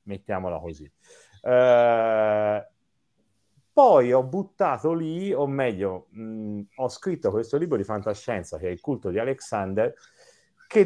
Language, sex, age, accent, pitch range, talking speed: Italian, male, 30-49, native, 100-135 Hz, 115 wpm